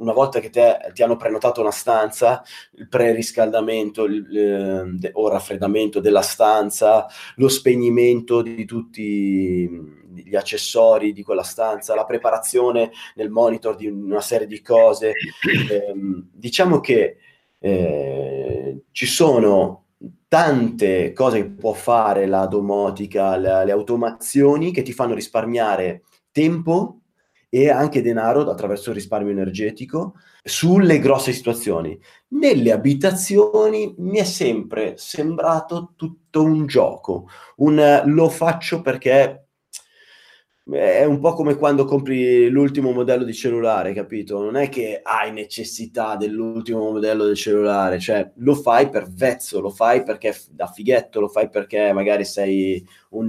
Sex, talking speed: male, 130 wpm